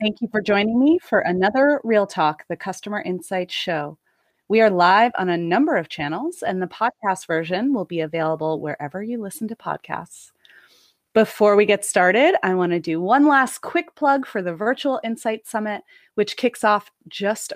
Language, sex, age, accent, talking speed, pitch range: English, female, 30-49, American, 180 wpm, 170-225 Hz